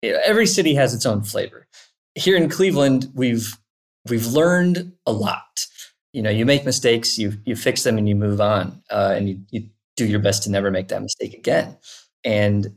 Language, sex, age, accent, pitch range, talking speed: English, male, 20-39, American, 100-130 Hz, 195 wpm